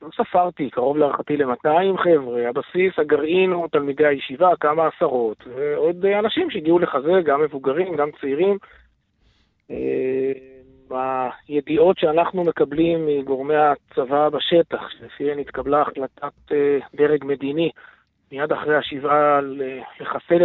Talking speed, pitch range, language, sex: 105 wpm, 135-160 Hz, English, male